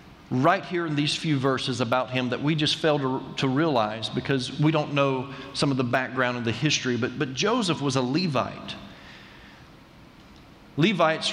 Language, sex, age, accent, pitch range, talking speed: English, male, 40-59, American, 135-180 Hz, 175 wpm